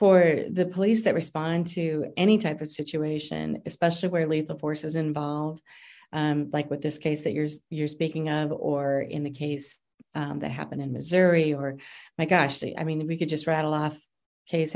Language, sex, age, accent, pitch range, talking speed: English, female, 40-59, American, 150-170 Hz, 185 wpm